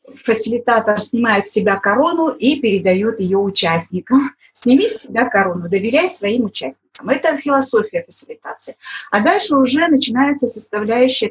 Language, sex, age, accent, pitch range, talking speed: Russian, female, 30-49, native, 200-275 Hz, 125 wpm